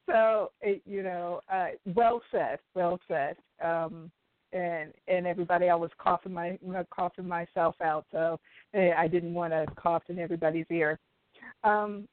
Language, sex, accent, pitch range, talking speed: English, female, American, 160-200 Hz, 150 wpm